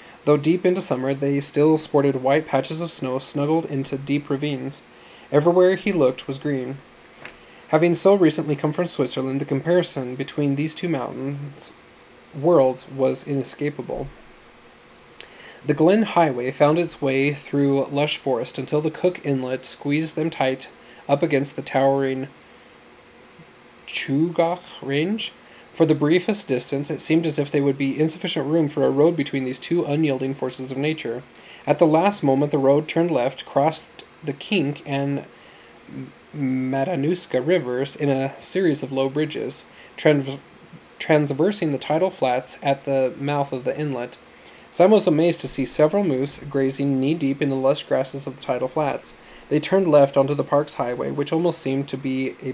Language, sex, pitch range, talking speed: English, male, 135-155 Hz, 160 wpm